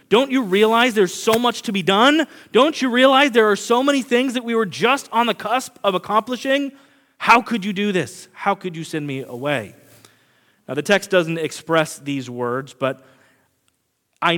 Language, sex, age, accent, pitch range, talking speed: English, male, 30-49, American, 170-270 Hz, 190 wpm